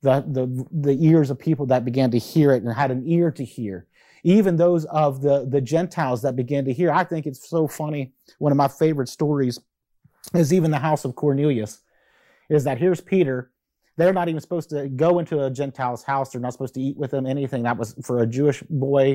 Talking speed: 225 wpm